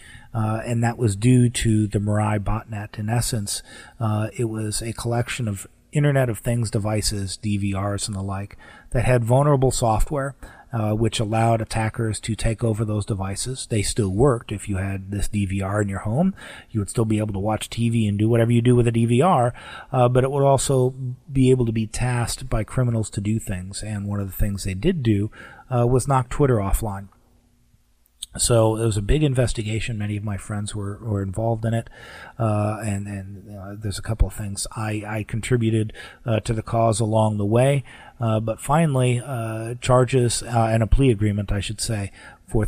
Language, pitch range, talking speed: English, 105-120 Hz, 200 wpm